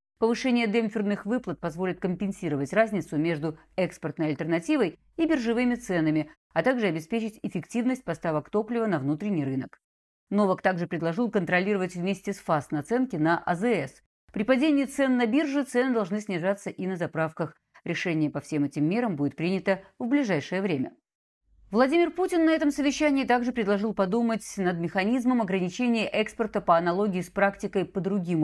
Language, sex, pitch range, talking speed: Russian, female, 165-235 Hz, 150 wpm